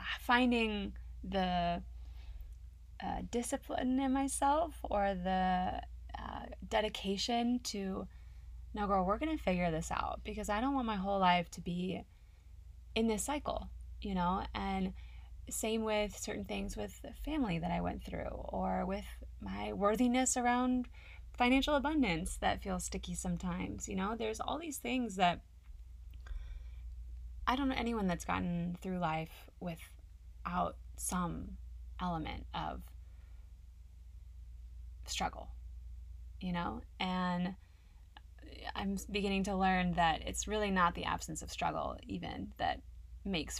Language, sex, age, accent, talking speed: English, female, 20-39, American, 130 wpm